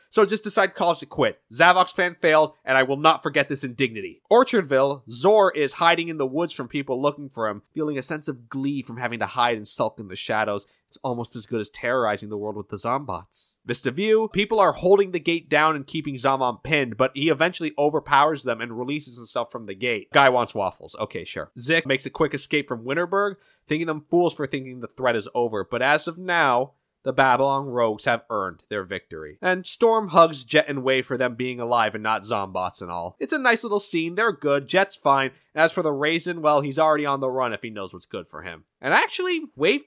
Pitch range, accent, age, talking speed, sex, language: 125-180 Hz, American, 20-39, 230 wpm, male, English